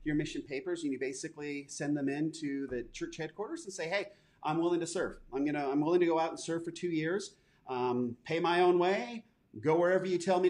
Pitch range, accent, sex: 145-180 Hz, American, male